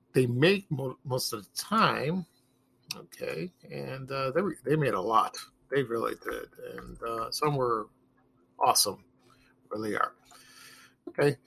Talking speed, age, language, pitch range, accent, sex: 145 wpm, 50-69, English, 130-170 Hz, American, male